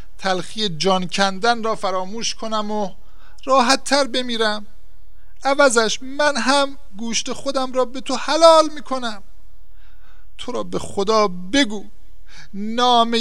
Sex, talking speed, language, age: male, 120 wpm, Persian, 50-69